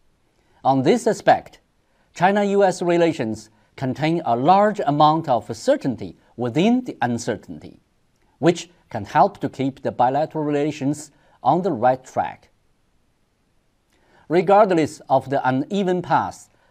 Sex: male